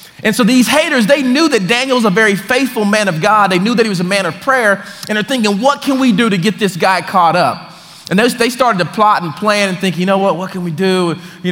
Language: English